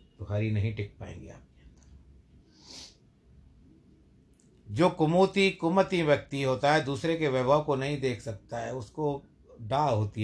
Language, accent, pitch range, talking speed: Hindi, native, 95-140 Hz, 130 wpm